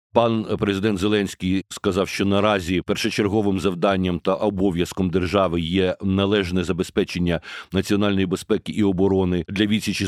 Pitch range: 95-110 Hz